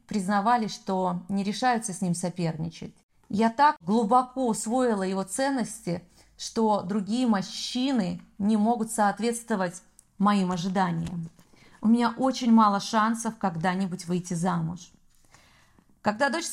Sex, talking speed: female, 115 wpm